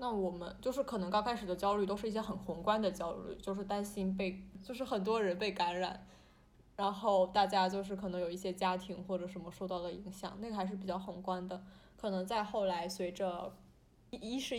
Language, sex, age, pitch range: Chinese, female, 20-39, 185-220 Hz